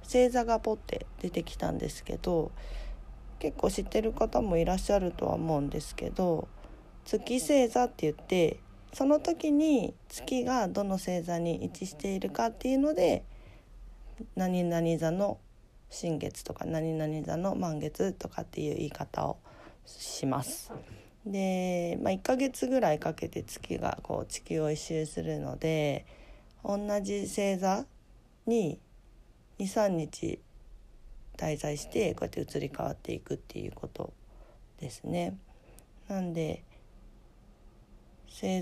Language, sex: Japanese, female